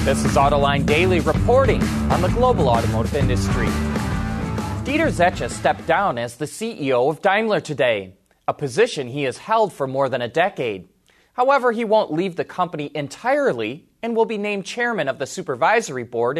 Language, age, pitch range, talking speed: English, 20-39, 140-215 Hz, 170 wpm